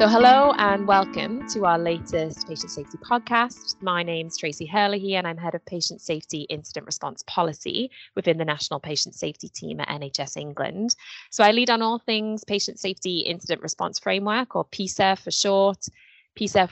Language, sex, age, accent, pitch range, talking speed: English, female, 20-39, British, 160-205 Hz, 175 wpm